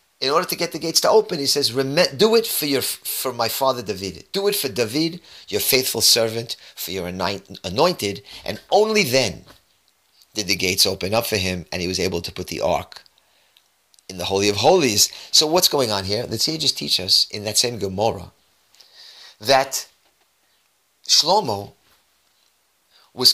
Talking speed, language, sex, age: 170 wpm, English, male, 30-49